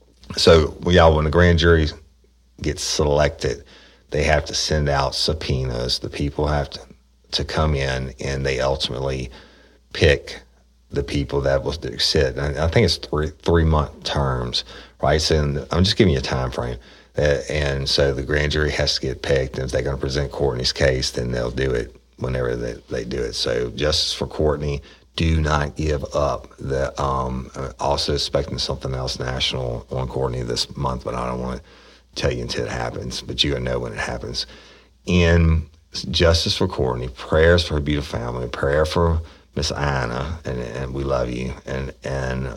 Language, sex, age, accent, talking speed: English, male, 40-59, American, 185 wpm